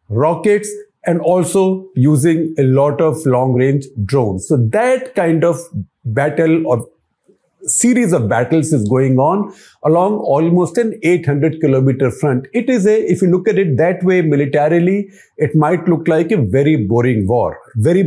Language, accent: English, Indian